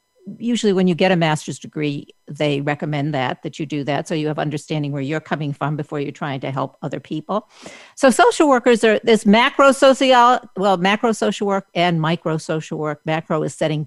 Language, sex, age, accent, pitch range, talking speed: English, female, 50-69, American, 155-210 Hz, 205 wpm